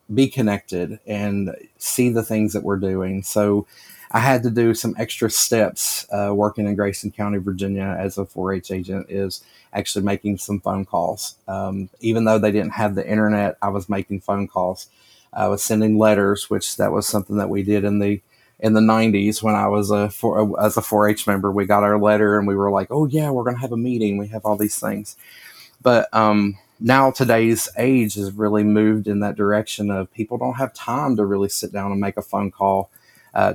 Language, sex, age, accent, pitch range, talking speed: English, male, 30-49, American, 100-110 Hz, 210 wpm